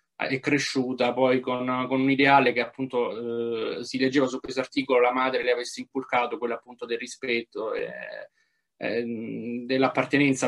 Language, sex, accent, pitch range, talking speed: Italian, male, native, 125-145 Hz, 155 wpm